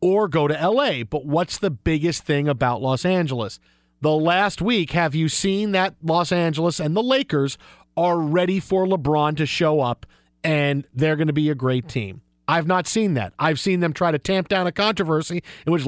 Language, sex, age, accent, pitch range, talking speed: English, male, 40-59, American, 150-195 Hz, 205 wpm